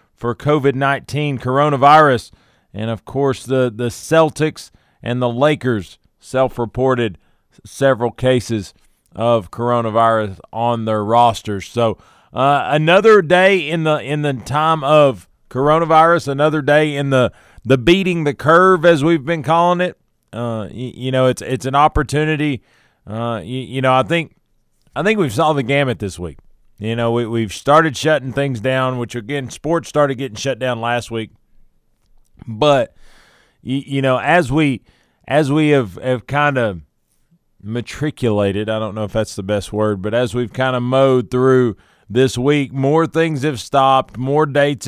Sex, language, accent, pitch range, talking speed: male, English, American, 110-145 Hz, 160 wpm